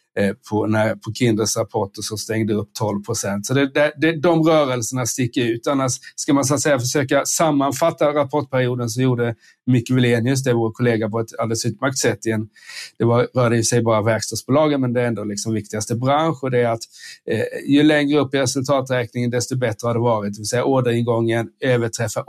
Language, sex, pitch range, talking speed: Swedish, male, 115-140 Hz, 190 wpm